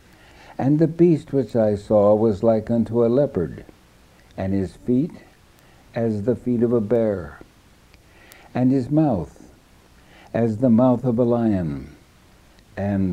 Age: 60-79